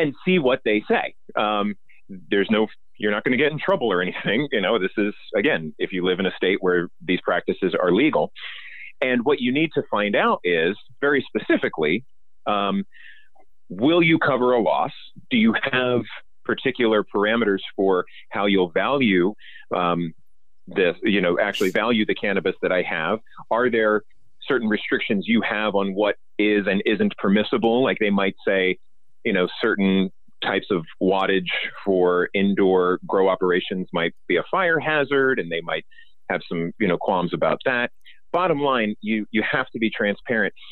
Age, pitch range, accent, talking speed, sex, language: 30-49, 95-125 Hz, American, 175 wpm, male, English